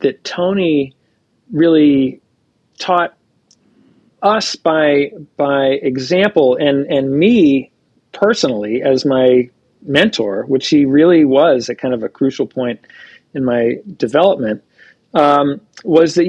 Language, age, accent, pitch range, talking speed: English, 40-59, American, 135-180 Hz, 115 wpm